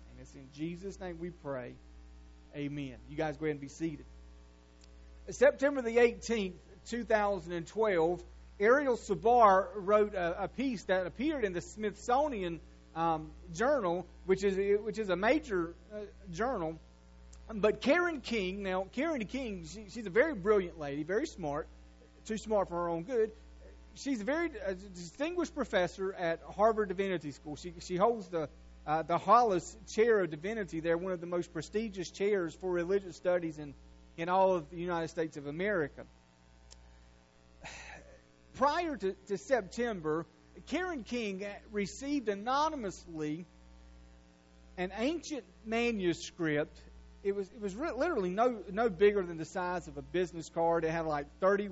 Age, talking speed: 40-59, 150 wpm